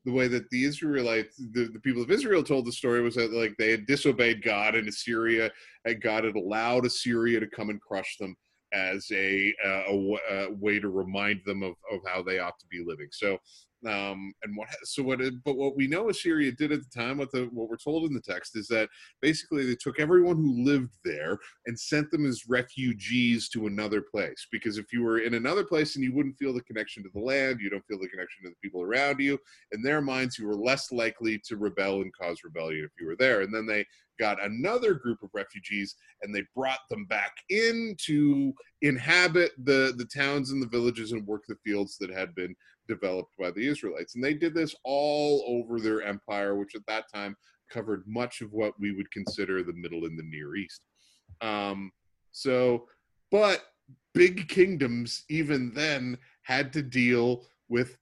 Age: 30-49